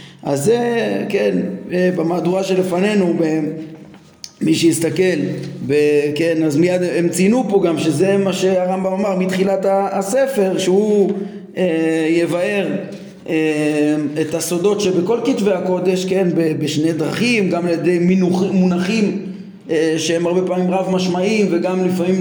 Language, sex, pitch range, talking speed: Hebrew, male, 165-195 Hz, 125 wpm